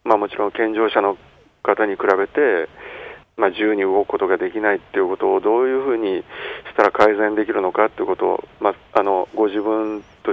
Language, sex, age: Japanese, male, 50-69